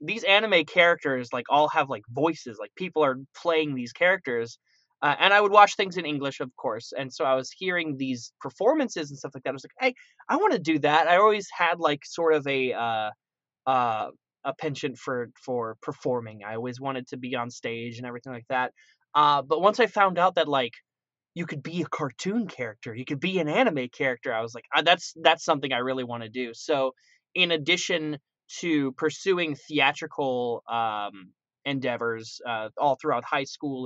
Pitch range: 125-165 Hz